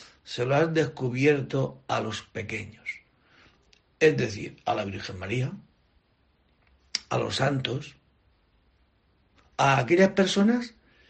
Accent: Spanish